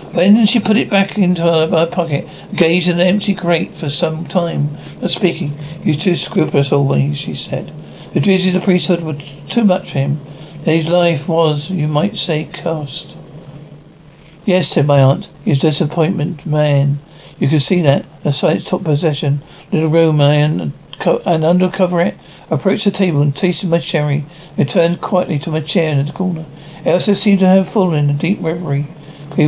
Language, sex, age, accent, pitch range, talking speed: English, male, 60-79, British, 150-180 Hz, 190 wpm